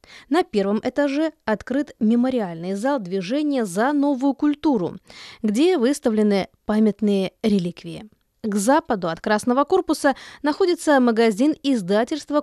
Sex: female